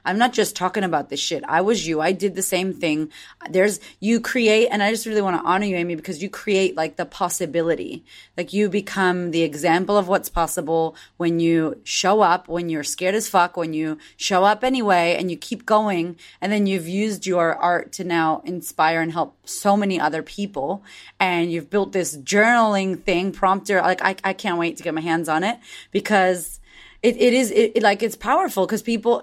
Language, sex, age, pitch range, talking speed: English, female, 30-49, 170-210 Hz, 210 wpm